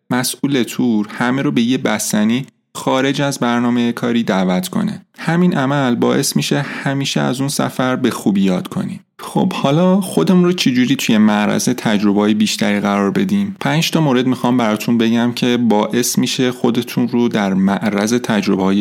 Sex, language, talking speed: male, Persian, 165 wpm